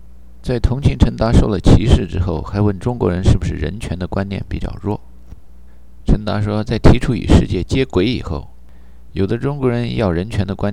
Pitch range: 65-105 Hz